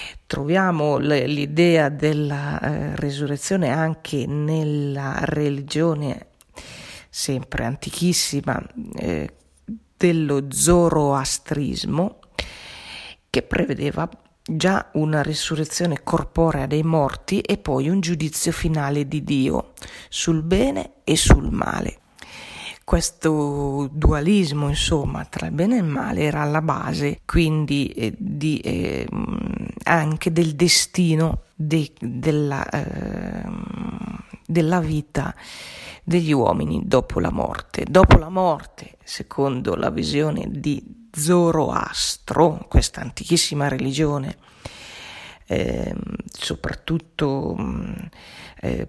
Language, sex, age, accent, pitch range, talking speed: Italian, female, 40-59, native, 145-175 Hz, 90 wpm